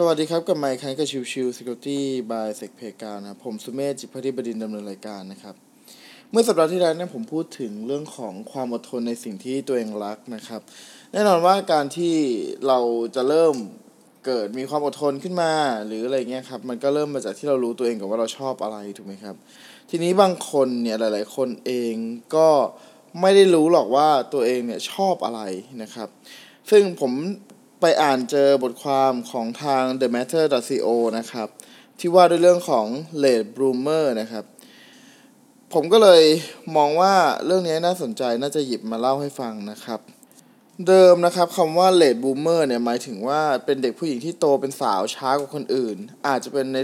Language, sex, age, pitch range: Thai, male, 20-39, 120-170 Hz